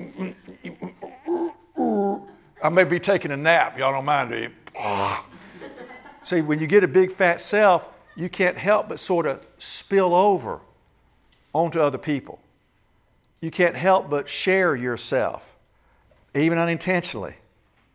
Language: English